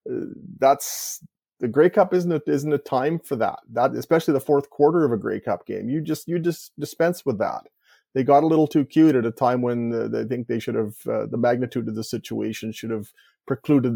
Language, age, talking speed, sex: English, 30-49, 230 wpm, male